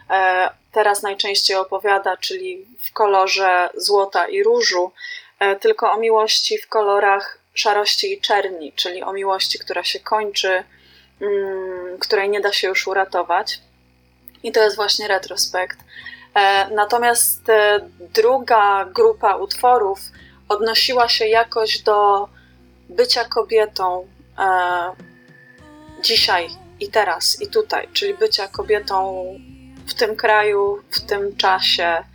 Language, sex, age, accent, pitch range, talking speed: Polish, female, 20-39, native, 190-225 Hz, 110 wpm